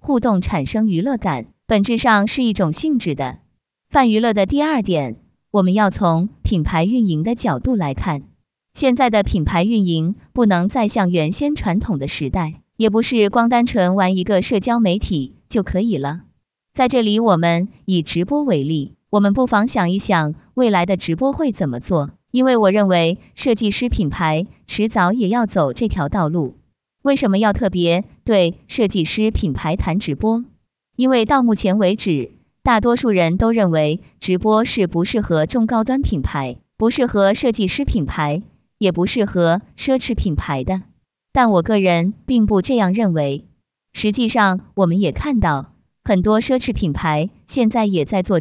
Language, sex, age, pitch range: Chinese, female, 20-39, 175-235 Hz